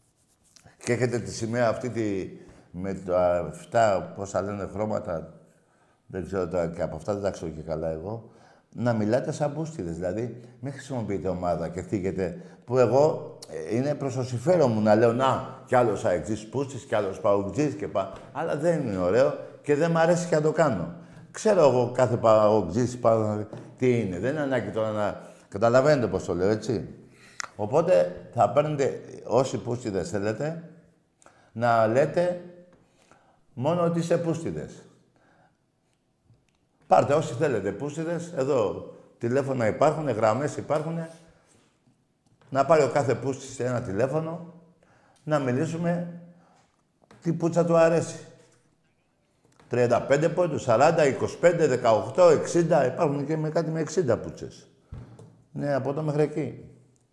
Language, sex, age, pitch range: Greek, male, 50-69, 110-160 Hz